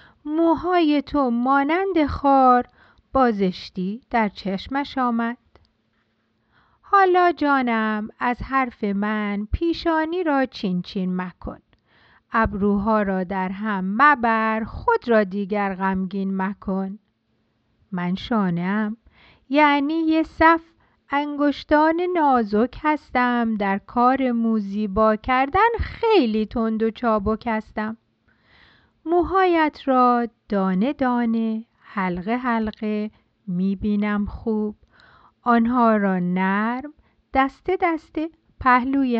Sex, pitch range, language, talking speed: female, 205-275 Hz, Persian, 90 wpm